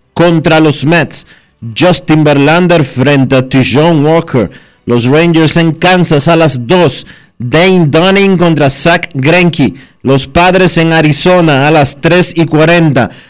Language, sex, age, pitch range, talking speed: Spanish, male, 40-59, 140-175 Hz, 135 wpm